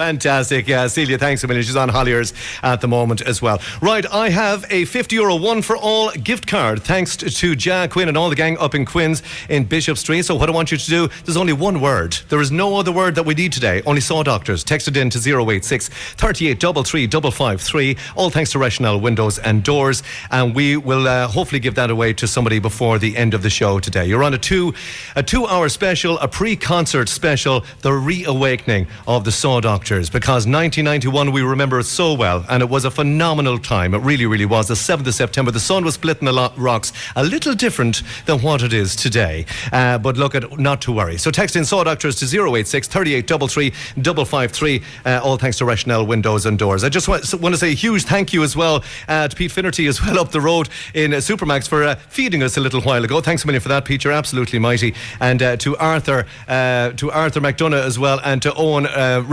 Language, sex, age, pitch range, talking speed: English, male, 40-59, 120-160 Hz, 225 wpm